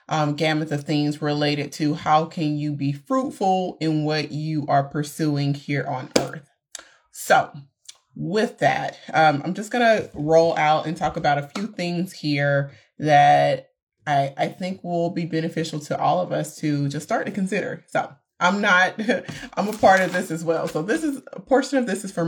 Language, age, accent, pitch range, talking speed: English, 30-49, American, 150-170 Hz, 190 wpm